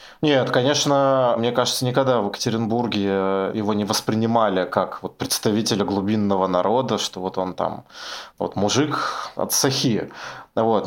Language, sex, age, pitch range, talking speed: Russian, male, 20-39, 105-125 Hz, 135 wpm